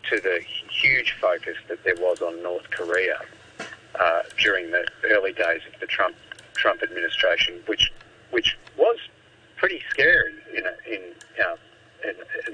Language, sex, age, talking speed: English, male, 50-69, 155 wpm